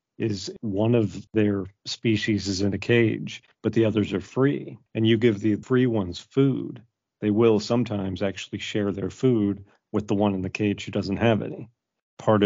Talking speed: 190 wpm